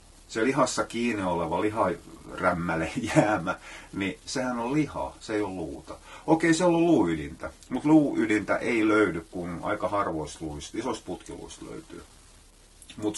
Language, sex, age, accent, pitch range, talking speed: Finnish, male, 30-49, native, 85-110 Hz, 135 wpm